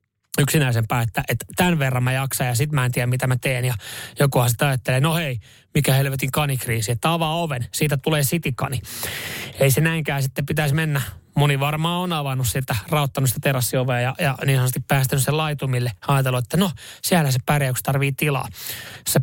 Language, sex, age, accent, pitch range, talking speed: Finnish, male, 30-49, native, 125-155 Hz, 185 wpm